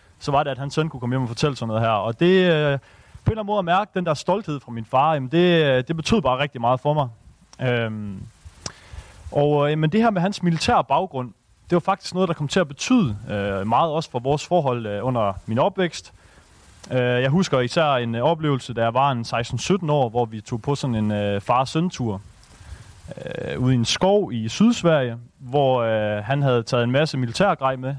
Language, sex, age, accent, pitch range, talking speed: Danish, male, 30-49, native, 115-165 Hz, 215 wpm